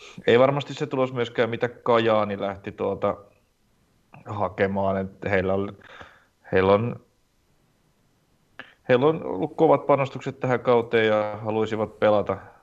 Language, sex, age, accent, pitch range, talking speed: Finnish, male, 30-49, native, 100-110 Hz, 105 wpm